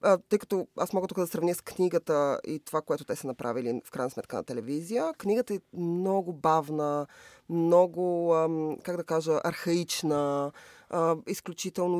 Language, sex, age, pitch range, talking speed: Bulgarian, female, 20-39, 165-200 Hz, 150 wpm